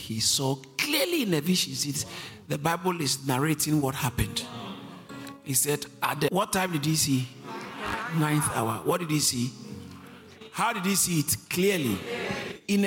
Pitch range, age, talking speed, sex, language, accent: 130-185 Hz, 50-69, 165 wpm, male, English, Nigerian